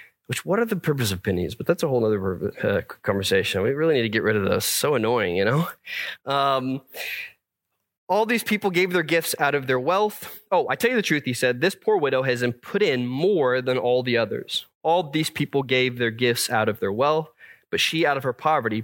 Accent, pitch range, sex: American, 125-165 Hz, male